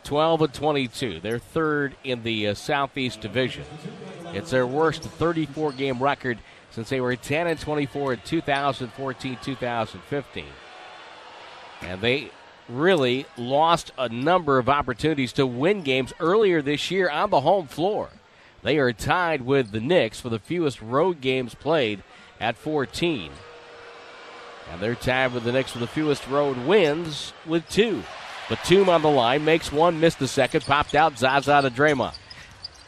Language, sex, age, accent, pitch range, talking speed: English, male, 50-69, American, 125-160 Hz, 140 wpm